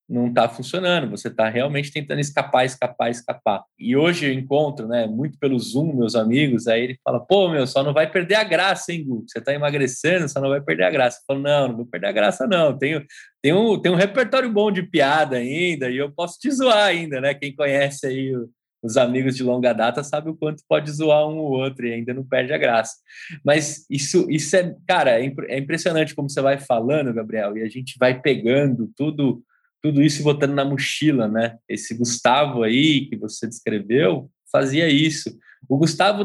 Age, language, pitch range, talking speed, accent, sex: 20-39, Portuguese, 125-160 Hz, 205 wpm, Brazilian, male